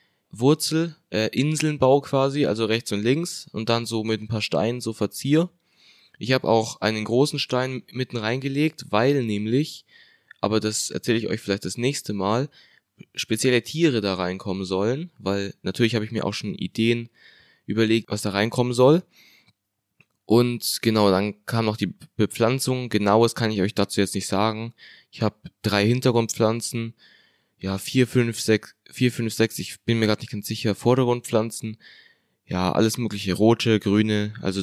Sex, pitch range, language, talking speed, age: male, 105-125 Hz, German, 160 wpm, 20-39